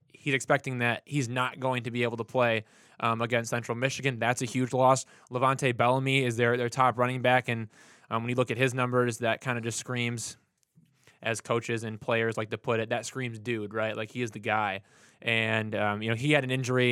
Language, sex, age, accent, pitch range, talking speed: English, male, 20-39, American, 115-135 Hz, 230 wpm